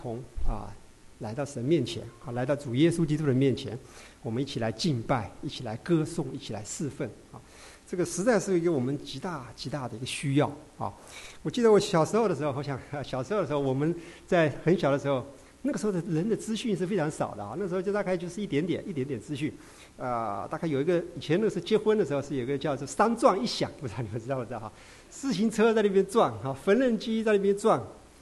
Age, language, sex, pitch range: 50-69, English, male, 135-200 Hz